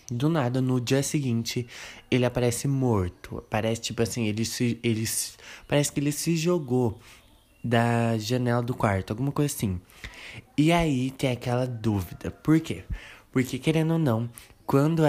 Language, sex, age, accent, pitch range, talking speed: Portuguese, male, 20-39, Brazilian, 115-140 Hz, 155 wpm